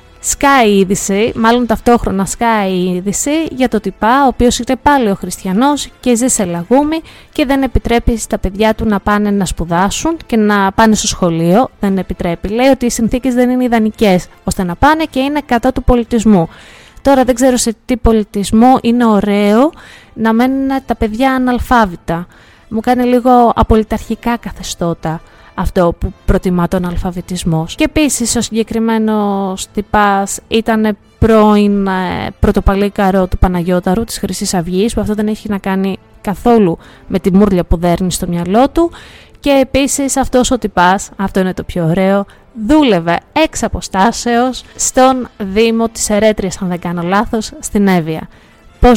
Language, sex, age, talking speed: Greek, female, 20-39, 155 wpm